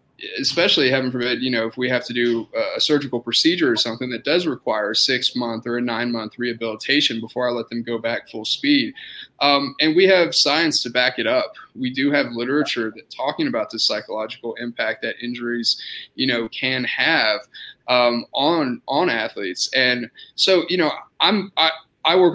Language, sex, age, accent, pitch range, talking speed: English, male, 20-39, American, 120-160 Hz, 190 wpm